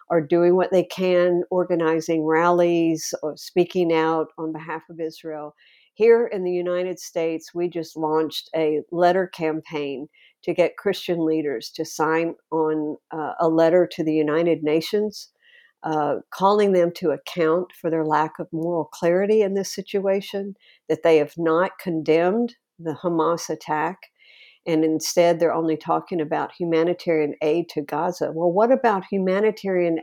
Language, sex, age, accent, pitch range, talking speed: English, female, 50-69, American, 160-185 Hz, 150 wpm